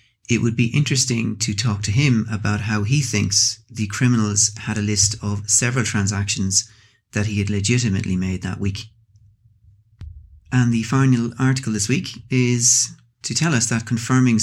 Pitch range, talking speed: 105-120 Hz, 160 wpm